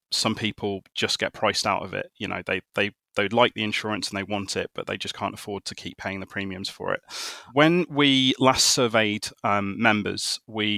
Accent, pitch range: British, 100-120 Hz